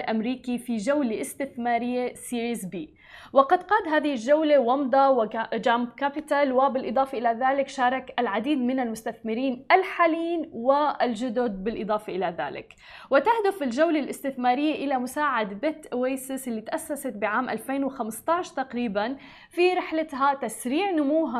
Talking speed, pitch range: 115 wpm, 235-290 Hz